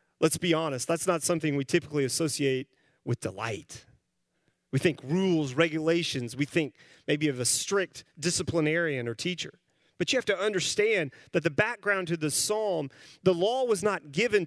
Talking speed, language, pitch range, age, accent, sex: 165 wpm, English, 140-200 Hz, 30-49, American, male